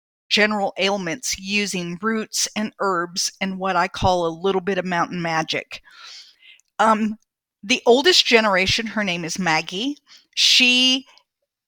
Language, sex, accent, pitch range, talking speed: English, female, American, 175-225 Hz, 130 wpm